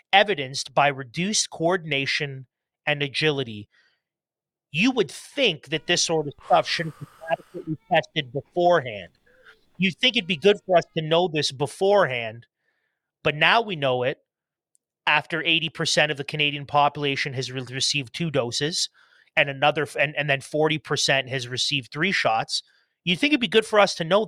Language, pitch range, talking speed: English, 140-170 Hz, 165 wpm